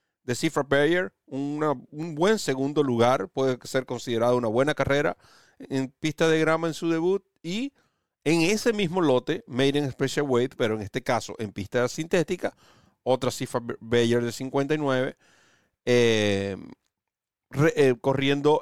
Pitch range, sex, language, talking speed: 120-150 Hz, male, Spanish, 140 wpm